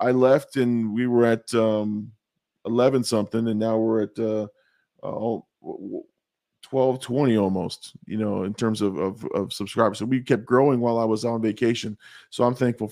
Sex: male